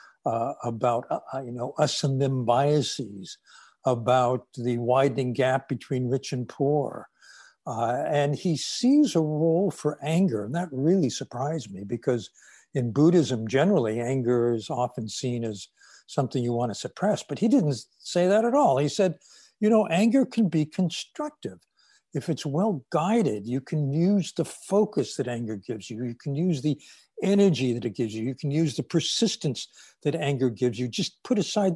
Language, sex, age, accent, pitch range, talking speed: English, male, 60-79, American, 125-165 Hz, 175 wpm